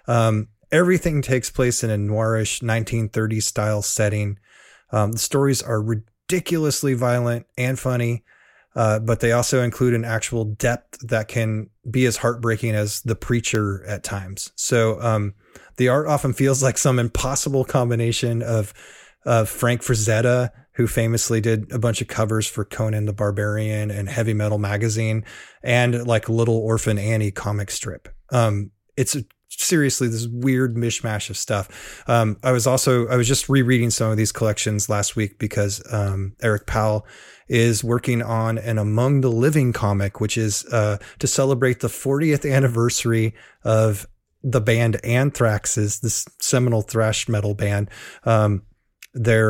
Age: 30-49